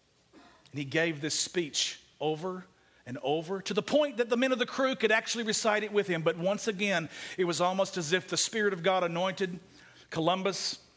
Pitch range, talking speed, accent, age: 145-210 Hz, 200 wpm, American, 50-69